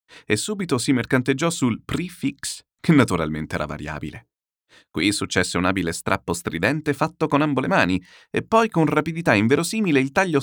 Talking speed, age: 160 wpm, 30-49